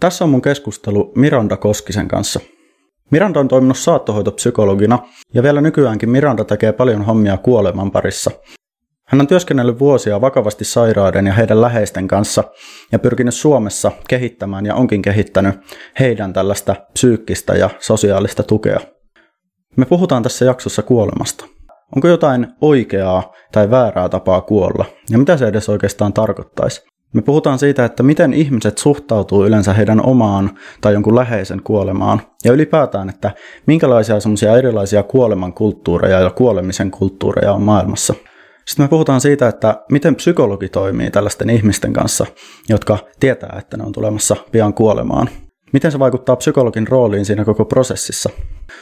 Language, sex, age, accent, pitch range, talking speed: Finnish, male, 20-39, native, 105-130 Hz, 140 wpm